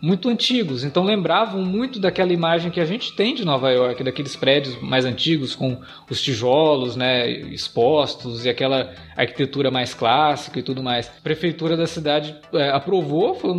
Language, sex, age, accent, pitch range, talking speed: Portuguese, male, 20-39, Brazilian, 130-185 Hz, 165 wpm